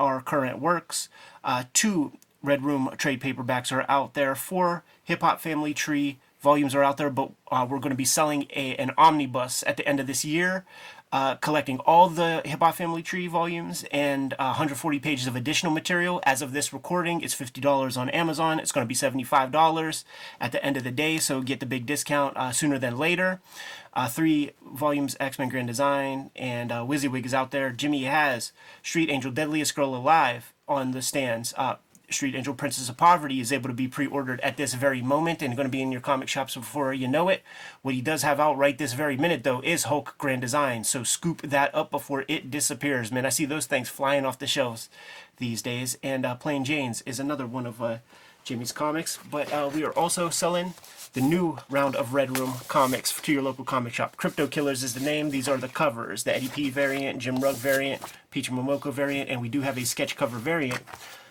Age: 30-49